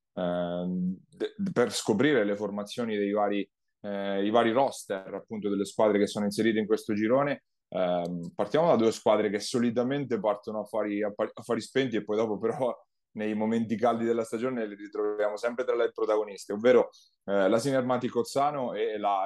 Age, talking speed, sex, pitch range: 20-39, 170 wpm, male, 100-120 Hz